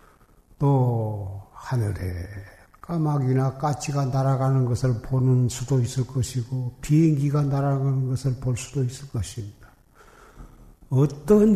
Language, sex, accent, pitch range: Korean, male, native, 115-140 Hz